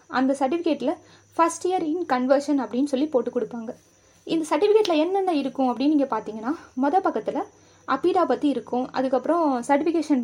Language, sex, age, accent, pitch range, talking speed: Tamil, female, 20-39, native, 255-315 Hz, 140 wpm